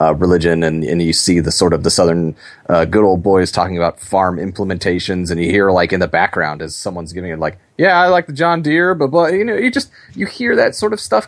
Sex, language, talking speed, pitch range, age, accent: male, English, 255 wpm, 95-135 Hz, 30-49, American